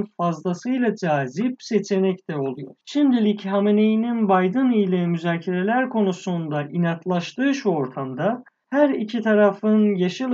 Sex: male